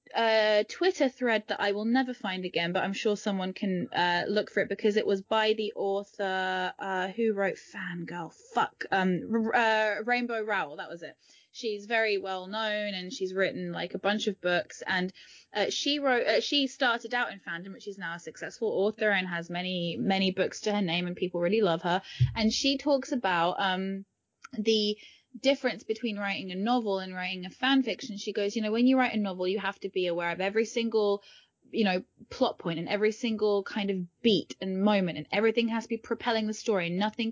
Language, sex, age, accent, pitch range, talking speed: English, female, 10-29, British, 190-235 Hz, 210 wpm